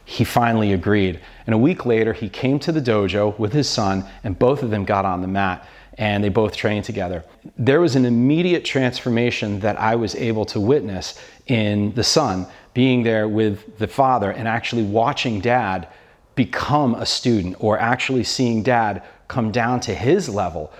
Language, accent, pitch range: English, American, 105-130 Hz